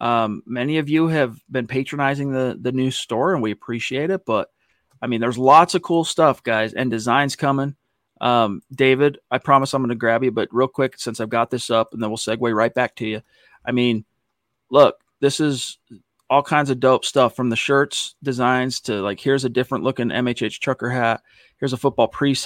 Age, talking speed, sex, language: 30-49, 210 wpm, male, English